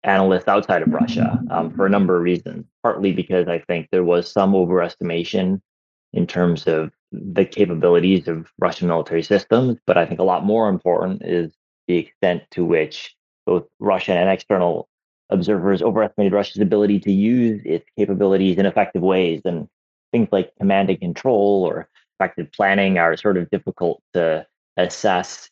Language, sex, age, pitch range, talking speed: English, male, 30-49, 90-100 Hz, 160 wpm